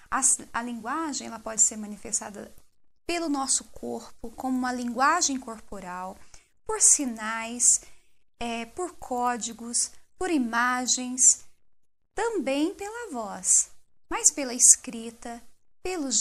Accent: Brazilian